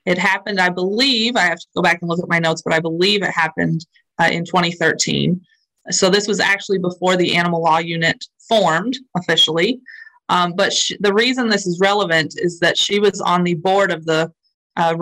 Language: English